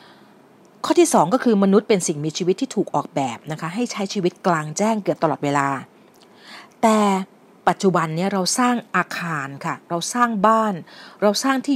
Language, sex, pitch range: Thai, female, 160-215 Hz